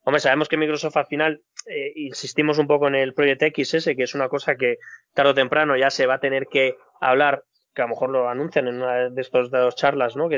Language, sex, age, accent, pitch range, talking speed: Spanish, male, 20-39, Spanish, 135-175 Hz, 260 wpm